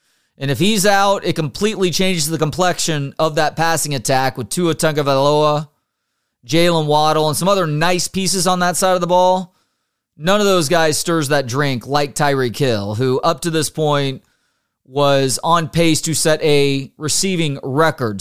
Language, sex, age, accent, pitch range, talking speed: English, male, 30-49, American, 135-175 Hz, 170 wpm